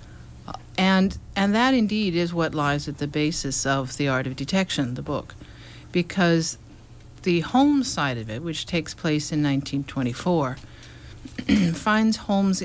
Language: English